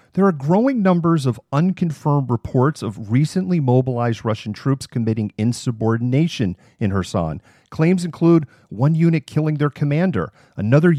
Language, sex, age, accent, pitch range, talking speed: English, male, 40-59, American, 120-160 Hz, 130 wpm